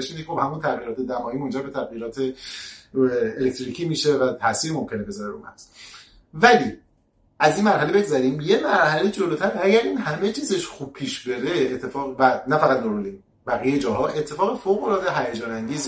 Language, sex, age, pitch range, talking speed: Persian, male, 30-49, 125-170 Hz, 155 wpm